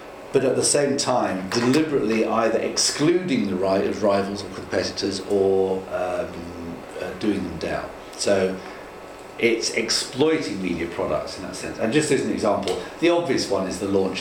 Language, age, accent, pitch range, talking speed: English, 50-69, British, 95-115 Hz, 165 wpm